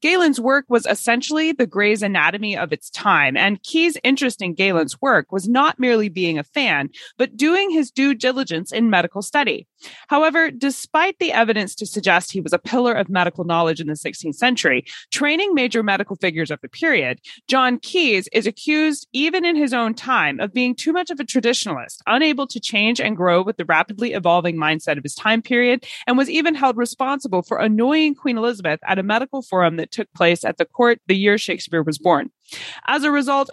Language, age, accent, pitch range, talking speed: English, 20-39, American, 185-265 Hz, 200 wpm